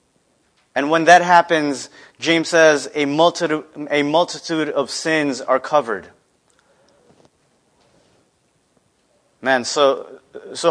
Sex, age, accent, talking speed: male, 30-49, American, 95 wpm